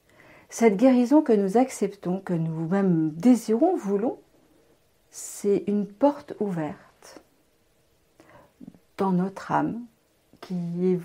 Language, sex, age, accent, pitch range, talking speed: French, female, 50-69, French, 175-210 Hz, 105 wpm